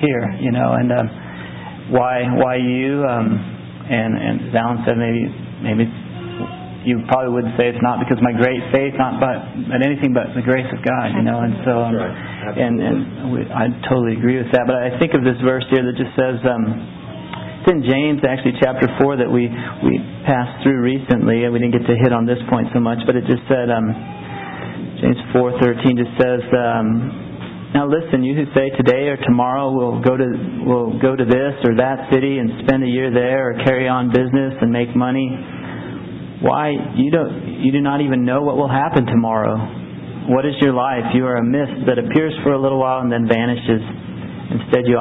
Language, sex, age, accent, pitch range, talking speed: English, male, 40-59, American, 115-130 Hz, 205 wpm